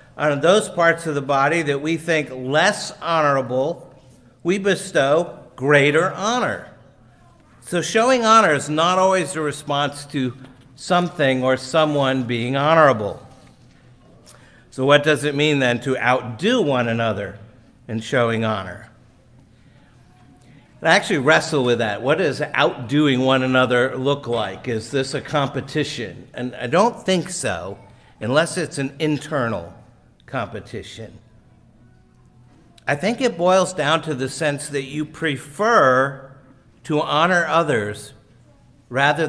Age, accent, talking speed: 50-69, American, 125 wpm